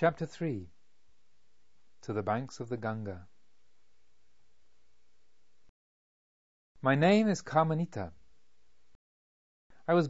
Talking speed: 85 wpm